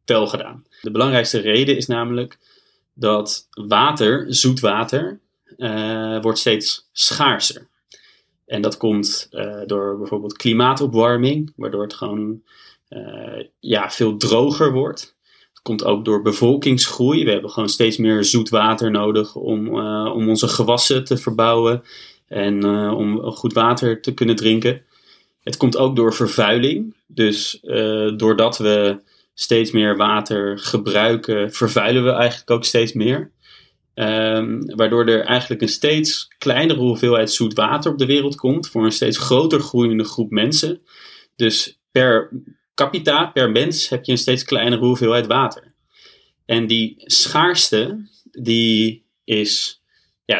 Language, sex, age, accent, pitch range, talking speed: English, male, 30-49, Dutch, 110-125 Hz, 130 wpm